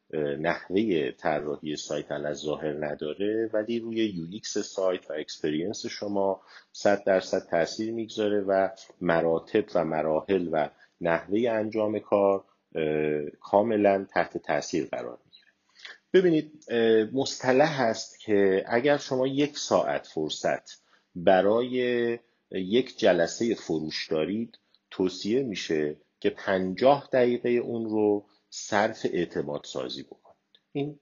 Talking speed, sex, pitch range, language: 105 wpm, male, 90-120 Hz, Persian